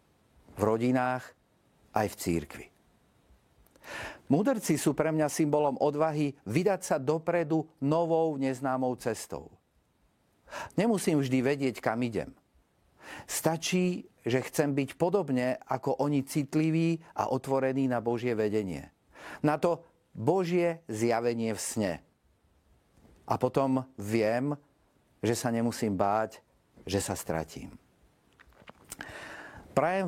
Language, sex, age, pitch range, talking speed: Slovak, male, 50-69, 110-150 Hz, 105 wpm